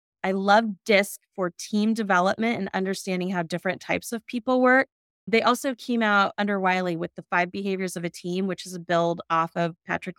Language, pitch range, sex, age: English, 180-220 Hz, female, 20-39